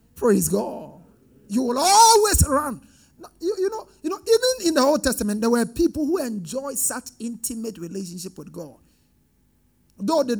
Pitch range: 190-250 Hz